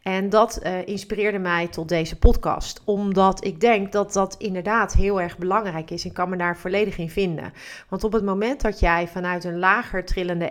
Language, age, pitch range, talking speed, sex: Dutch, 30-49, 170-195 Hz, 200 wpm, female